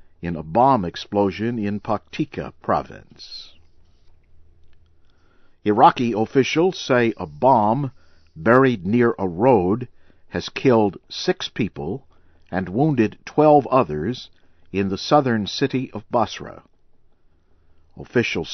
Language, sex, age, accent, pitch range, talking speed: English, male, 50-69, American, 85-120 Hz, 100 wpm